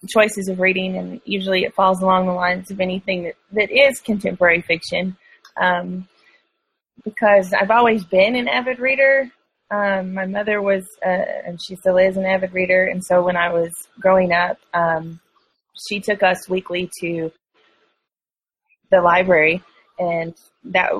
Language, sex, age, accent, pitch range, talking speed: English, female, 20-39, American, 175-200 Hz, 155 wpm